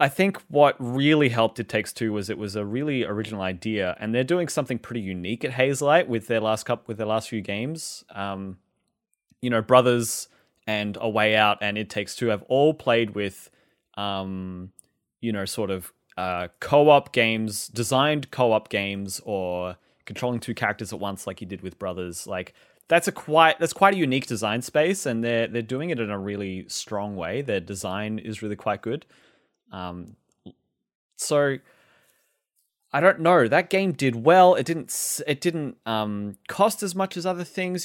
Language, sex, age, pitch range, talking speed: English, male, 20-39, 105-160 Hz, 185 wpm